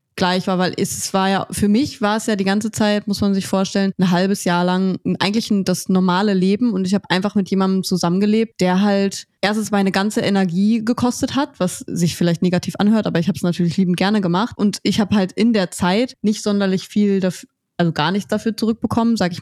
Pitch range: 185-220 Hz